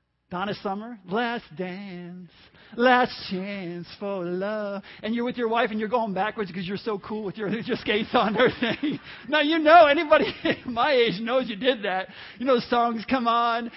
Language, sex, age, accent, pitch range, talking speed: English, male, 40-59, American, 195-270 Hz, 185 wpm